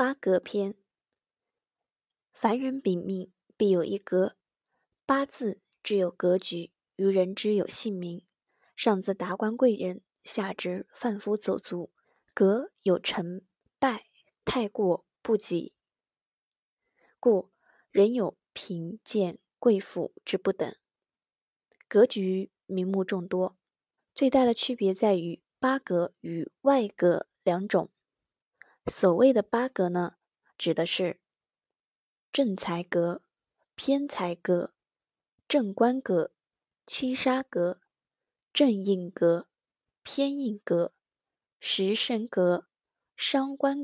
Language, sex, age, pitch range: Chinese, female, 20-39, 180-235 Hz